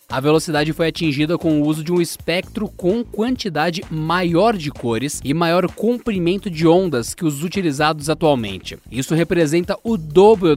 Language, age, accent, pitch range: Portuguese, 20-39, Brazilian, 150-195 Hz